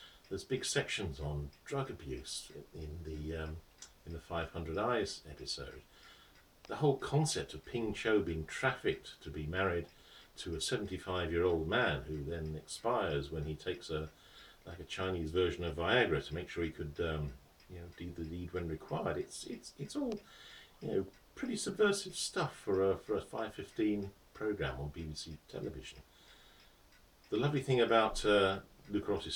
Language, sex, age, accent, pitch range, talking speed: English, male, 50-69, British, 80-110 Hz, 170 wpm